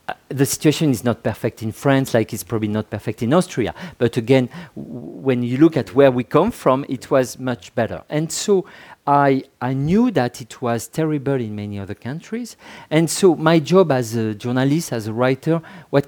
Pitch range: 115-155 Hz